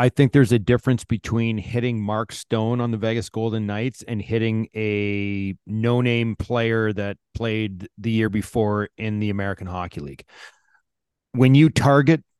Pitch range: 110-140 Hz